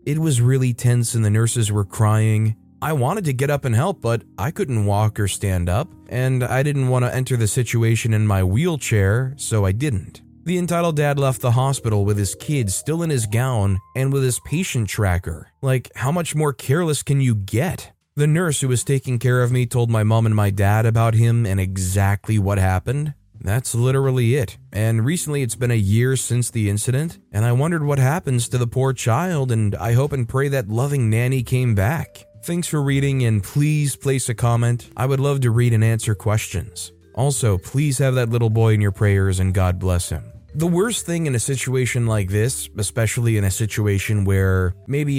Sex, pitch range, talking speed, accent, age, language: male, 110-140 Hz, 210 wpm, American, 20-39, English